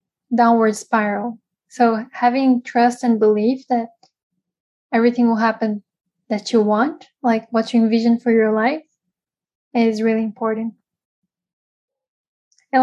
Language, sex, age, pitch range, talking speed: English, female, 10-29, 220-250 Hz, 115 wpm